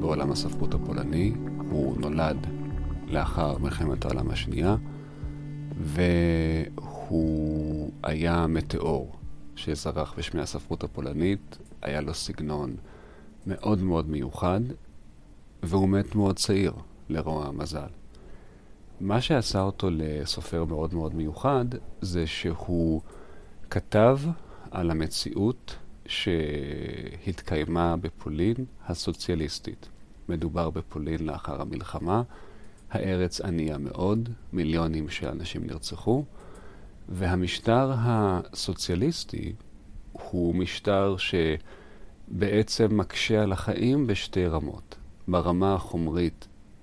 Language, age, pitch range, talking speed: Hebrew, 40-59, 75-100 Hz, 85 wpm